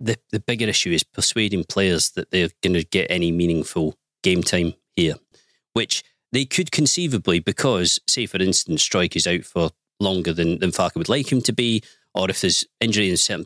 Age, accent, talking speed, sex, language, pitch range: 40-59, British, 200 wpm, male, English, 90-115 Hz